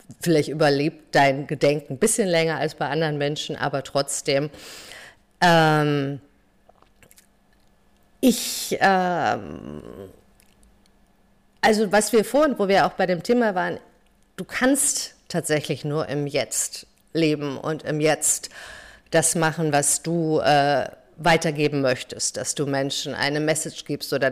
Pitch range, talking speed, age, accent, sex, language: 145-175 Hz, 125 wpm, 50-69, German, female, German